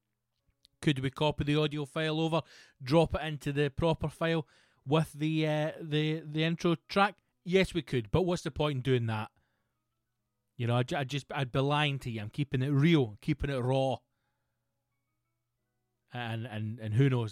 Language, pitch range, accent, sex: English, 120-145 Hz, British, male